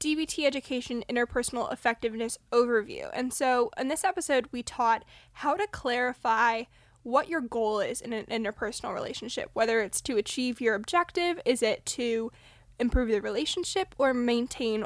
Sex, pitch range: female, 230-280 Hz